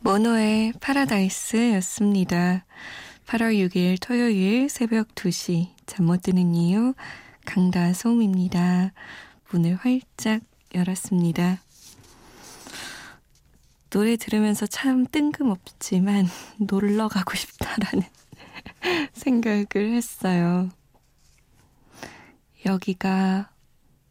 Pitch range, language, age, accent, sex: 185-235 Hz, Korean, 20-39, native, female